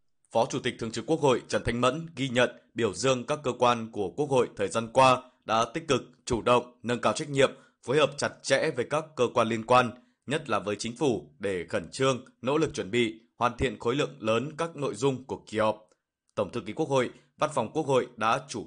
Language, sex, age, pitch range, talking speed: Vietnamese, male, 20-39, 115-140 Hz, 245 wpm